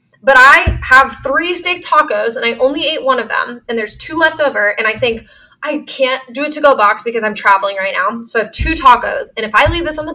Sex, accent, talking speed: female, American, 260 wpm